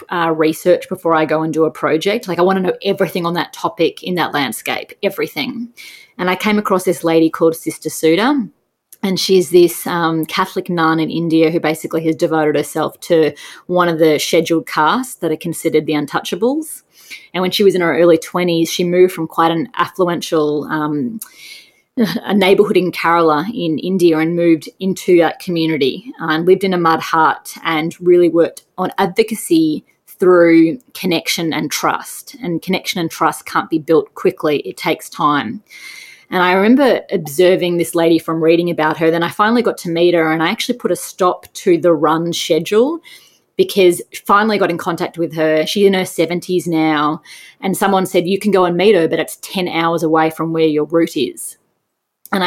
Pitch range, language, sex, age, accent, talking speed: 160-195 Hz, English, female, 20-39, Australian, 190 wpm